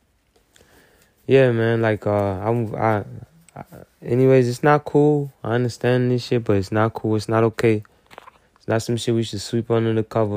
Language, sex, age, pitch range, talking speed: English, male, 20-39, 105-125 Hz, 185 wpm